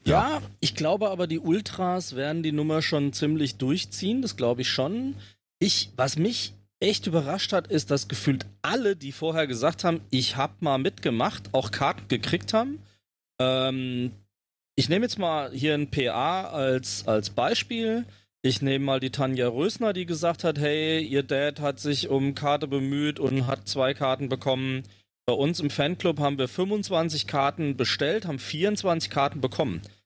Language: German